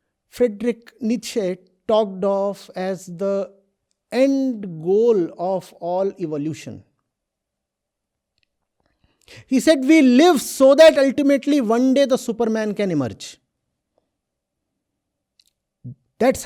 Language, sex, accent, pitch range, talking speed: English, male, Indian, 165-245 Hz, 90 wpm